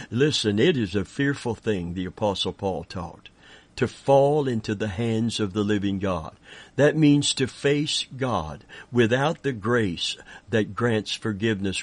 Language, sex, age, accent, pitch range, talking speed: English, male, 60-79, American, 105-135 Hz, 150 wpm